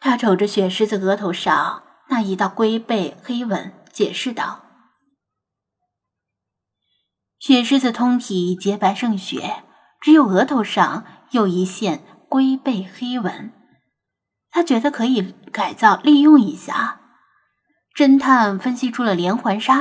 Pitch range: 190-265 Hz